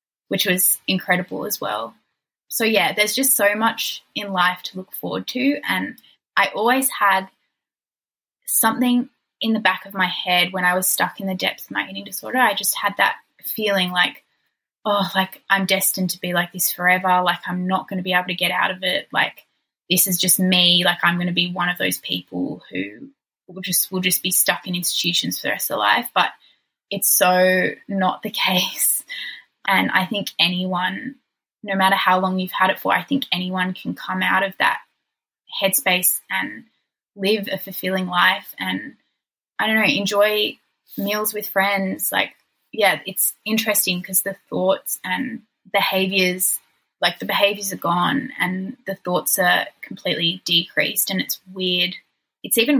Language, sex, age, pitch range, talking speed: English, female, 10-29, 180-205 Hz, 180 wpm